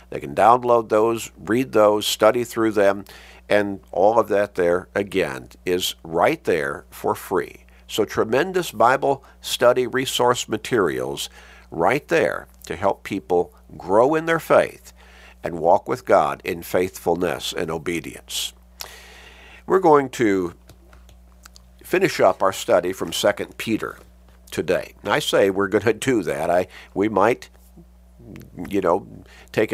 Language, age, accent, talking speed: English, 50-69, American, 135 wpm